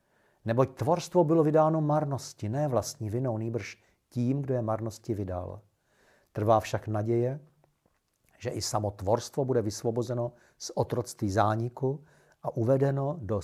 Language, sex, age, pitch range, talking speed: Czech, male, 50-69, 100-125 Hz, 130 wpm